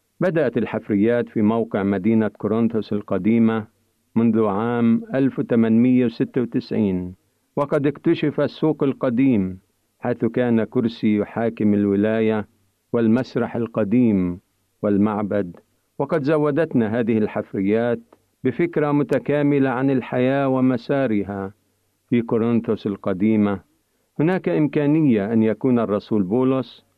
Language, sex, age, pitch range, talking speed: Arabic, male, 50-69, 105-130 Hz, 90 wpm